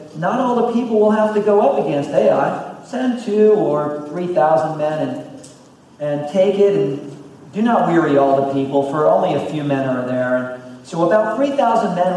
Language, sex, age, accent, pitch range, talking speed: English, male, 40-59, American, 140-180 Hz, 195 wpm